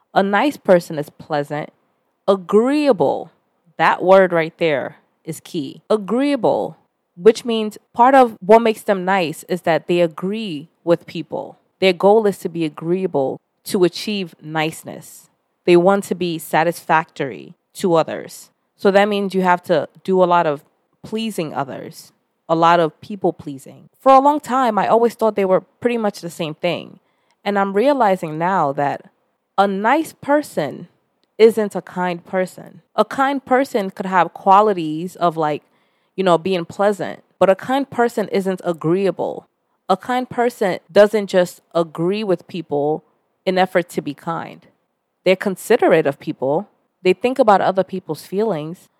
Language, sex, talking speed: English, female, 155 wpm